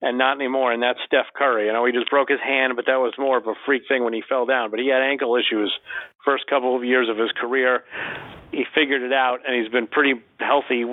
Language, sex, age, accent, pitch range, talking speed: English, male, 40-59, American, 125-145 Hz, 260 wpm